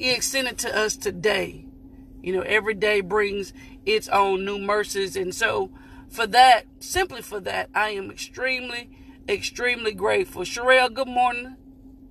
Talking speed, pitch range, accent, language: 145 wpm, 230-285 Hz, American, English